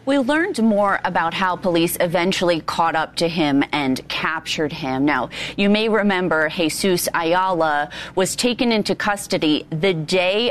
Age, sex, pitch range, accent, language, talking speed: 30-49, female, 160-205 Hz, American, English, 150 wpm